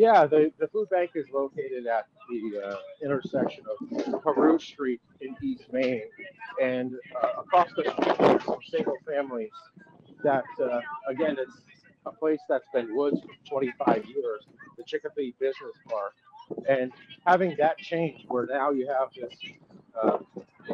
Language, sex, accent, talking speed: English, male, American, 150 wpm